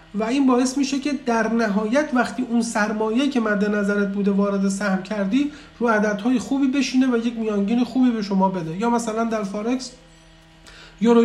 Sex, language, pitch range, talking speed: male, Persian, 175-230 Hz, 175 wpm